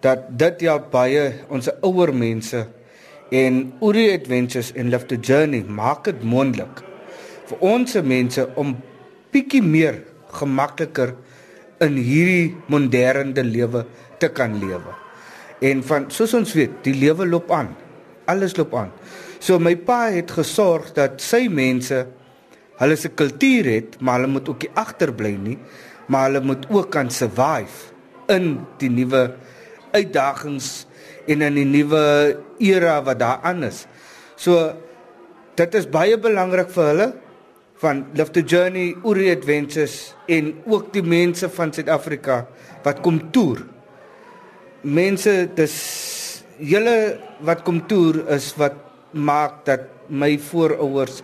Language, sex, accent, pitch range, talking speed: English, male, Indian, 130-175 Hz, 135 wpm